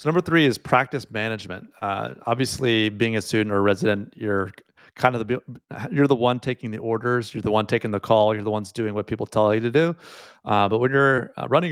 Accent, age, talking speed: American, 30-49, 230 wpm